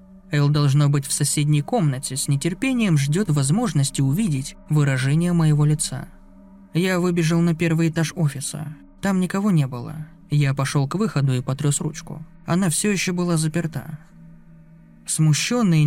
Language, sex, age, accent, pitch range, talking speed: Russian, male, 20-39, native, 140-170 Hz, 140 wpm